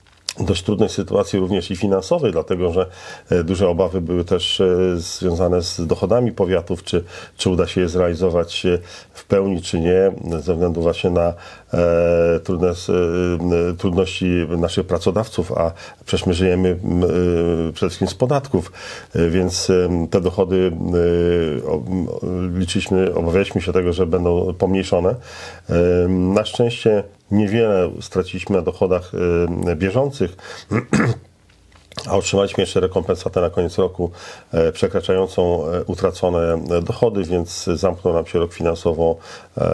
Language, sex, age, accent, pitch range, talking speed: Polish, male, 40-59, native, 85-95 Hz, 110 wpm